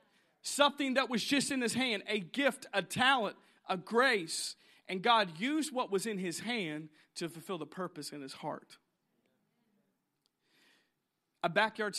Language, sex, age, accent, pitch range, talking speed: English, male, 40-59, American, 175-225 Hz, 150 wpm